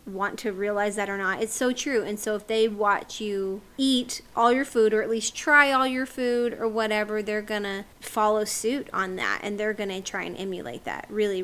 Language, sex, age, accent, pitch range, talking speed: English, female, 20-39, American, 210-255 Hz, 220 wpm